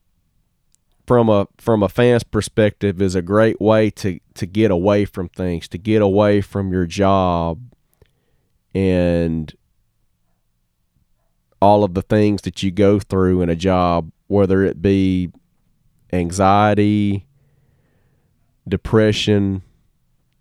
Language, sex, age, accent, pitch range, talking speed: English, male, 30-49, American, 95-110 Hz, 115 wpm